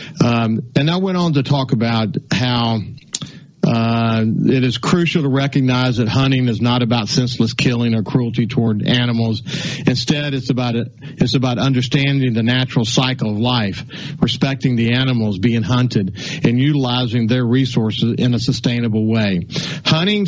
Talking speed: 155 wpm